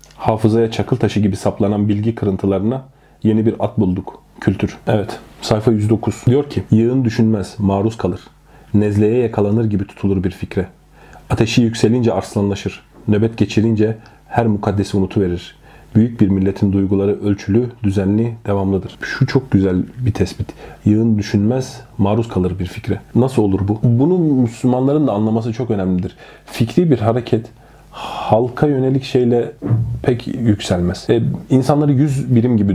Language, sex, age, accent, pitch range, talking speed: Turkish, male, 40-59, native, 105-120 Hz, 135 wpm